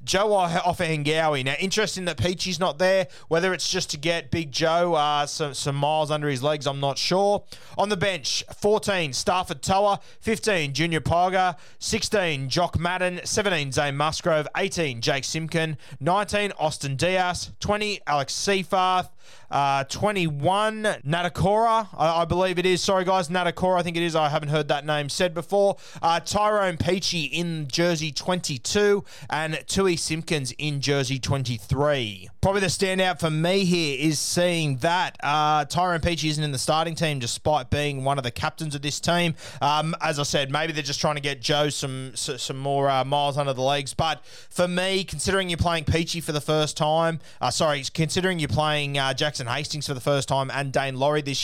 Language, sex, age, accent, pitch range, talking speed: English, male, 20-39, Australian, 140-180 Hz, 180 wpm